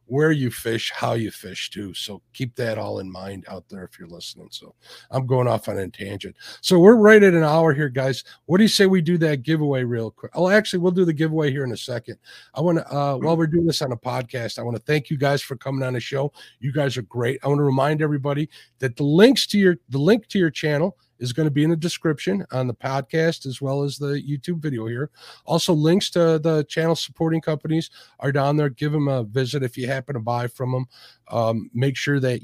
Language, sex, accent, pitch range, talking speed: English, male, American, 120-160 Hz, 250 wpm